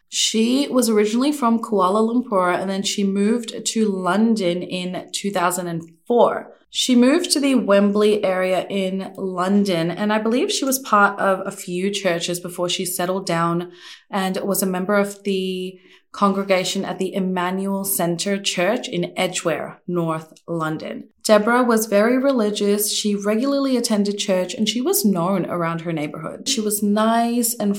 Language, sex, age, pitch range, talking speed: English, female, 20-39, 180-220 Hz, 155 wpm